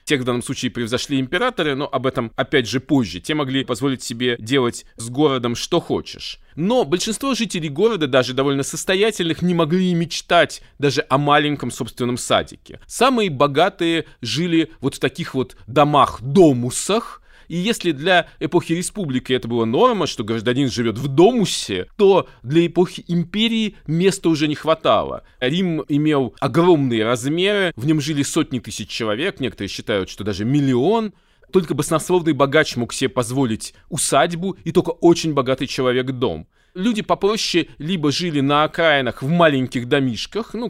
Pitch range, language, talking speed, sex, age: 135-185 Hz, Russian, 150 wpm, male, 20-39